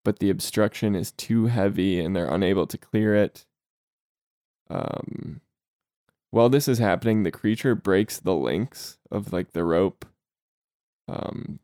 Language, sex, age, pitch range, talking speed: English, male, 10-29, 95-115 Hz, 140 wpm